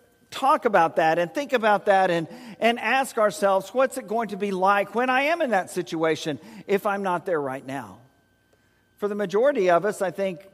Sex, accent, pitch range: male, American, 135-195 Hz